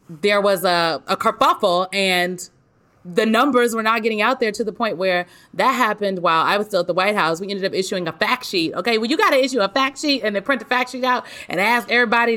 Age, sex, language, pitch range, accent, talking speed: 30-49, female, English, 165-235 Hz, American, 255 wpm